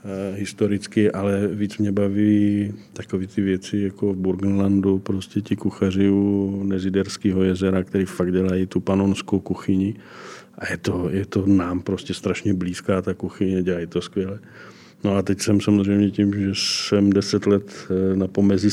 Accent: native